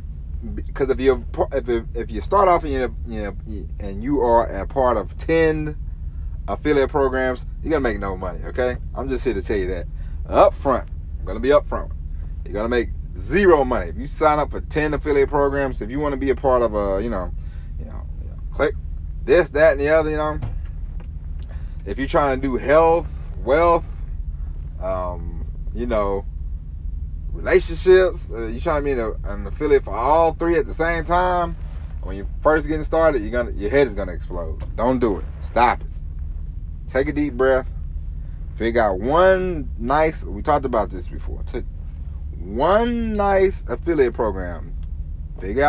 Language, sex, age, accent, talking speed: English, male, 30-49, American, 180 wpm